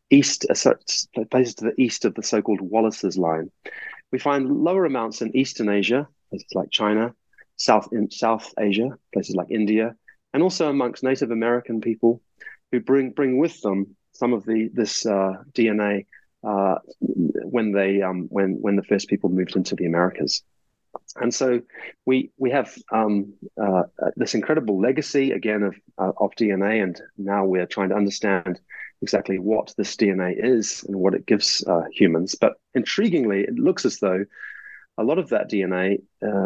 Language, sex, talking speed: English, male, 165 wpm